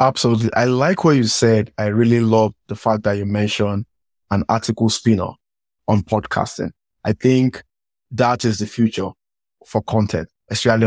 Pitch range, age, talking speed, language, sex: 105-130 Hz, 20-39, 155 wpm, English, male